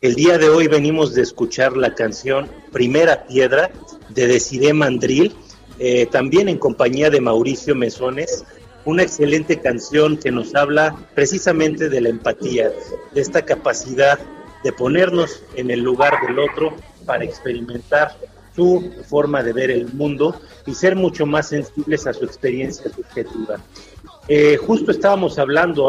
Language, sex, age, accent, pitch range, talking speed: Spanish, male, 40-59, Mexican, 135-180 Hz, 145 wpm